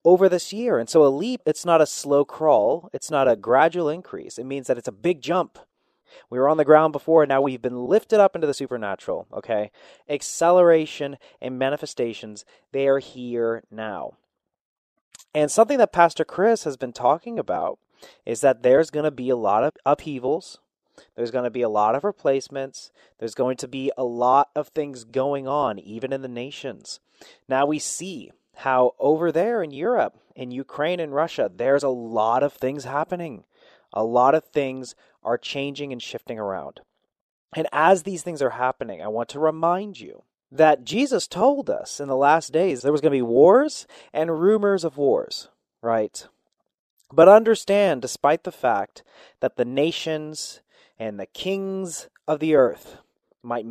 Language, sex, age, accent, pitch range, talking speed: English, male, 30-49, American, 130-170 Hz, 180 wpm